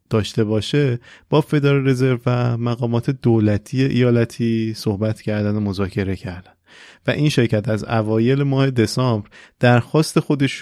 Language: Persian